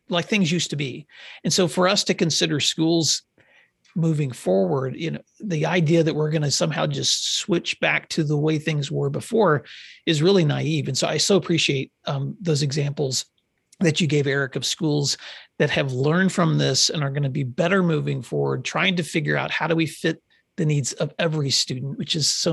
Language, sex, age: English, male, 40-59